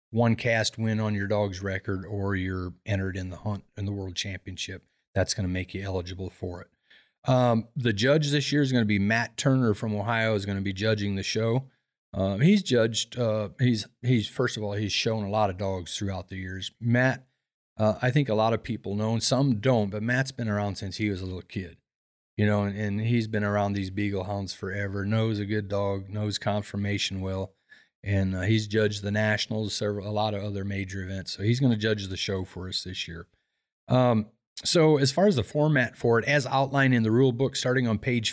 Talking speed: 225 wpm